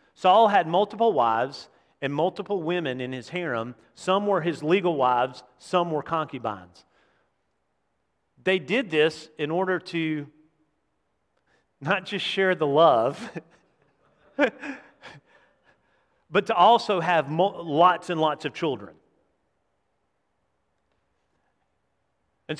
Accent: American